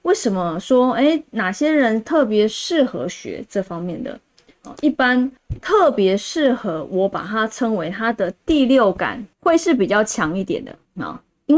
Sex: female